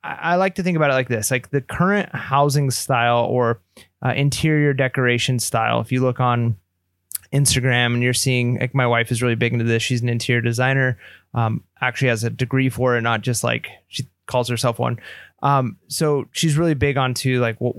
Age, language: 20-39, English